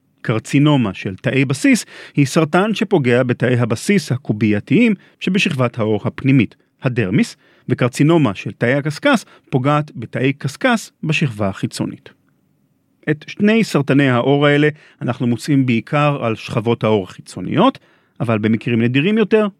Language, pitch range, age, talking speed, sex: Hebrew, 120-160 Hz, 40-59, 120 wpm, male